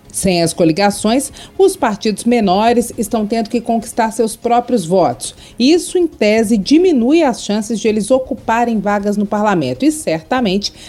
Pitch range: 175-240 Hz